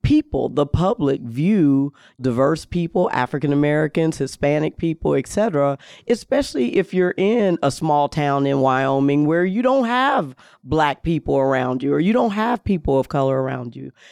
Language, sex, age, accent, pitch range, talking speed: English, female, 40-59, American, 135-180 Hz, 155 wpm